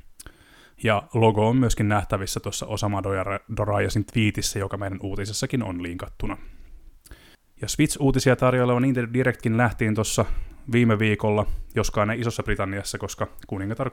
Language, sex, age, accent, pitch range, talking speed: Finnish, male, 20-39, native, 100-120 Hz, 125 wpm